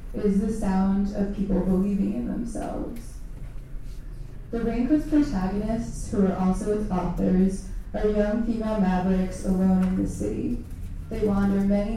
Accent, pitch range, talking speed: American, 180-205 Hz, 135 wpm